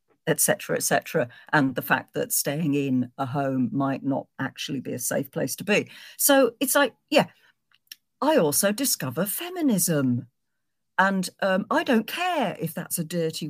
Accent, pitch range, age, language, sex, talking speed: British, 140-200 Hz, 50-69, English, female, 160 wpm